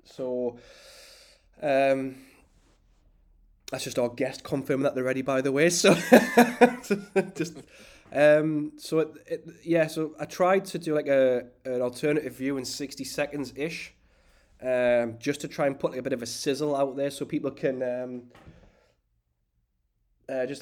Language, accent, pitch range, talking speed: English, British, 120-145 Hz, 155 wpm